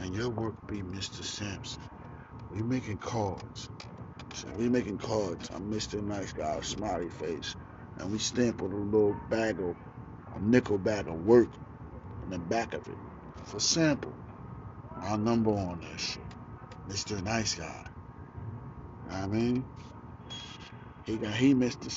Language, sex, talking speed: English, male, 150 wpm